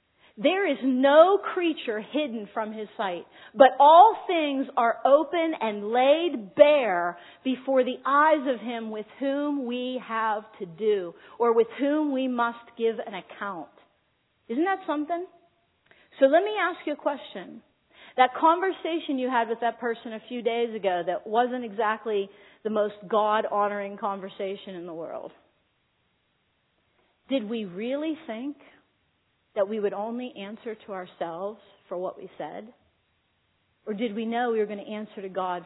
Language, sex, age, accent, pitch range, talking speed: English, female, 40-59, American, 215-280 Hz, 155 wpm